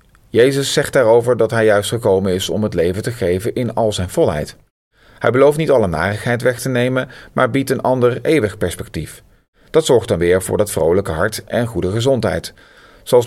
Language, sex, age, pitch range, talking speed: Dutch, male, 40-59, 95-125 Hz, 195 wpm